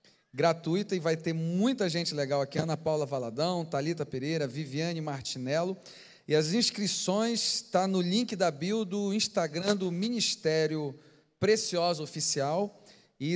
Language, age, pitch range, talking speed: Portuguese, 40-59, 155-190 Hz, 140 wpm